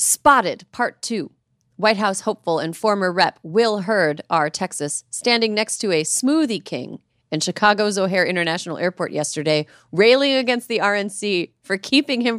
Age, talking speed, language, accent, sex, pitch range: 30-49, 155 wpm, English, American, female, 160-235 Hz